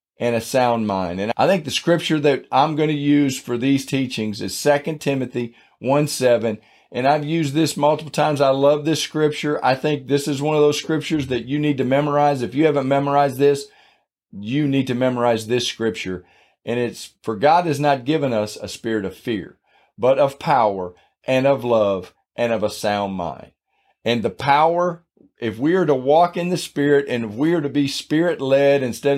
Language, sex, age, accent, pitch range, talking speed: English, male, 40-59, American, 120-150 Hz, 205 wpm